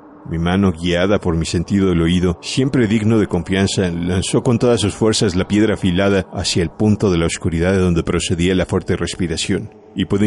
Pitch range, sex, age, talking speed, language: 90-105 Hz, male, 40-59, 200 wpm, Spanish